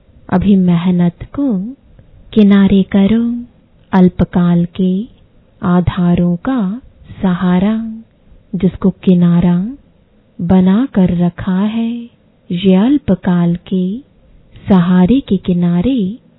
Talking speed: 75 wpm